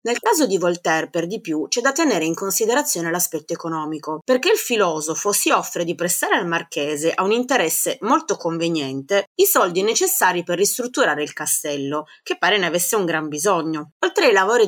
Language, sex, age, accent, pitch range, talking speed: Italian, female, 30-49, native, 165-230 Hz, 185 wpm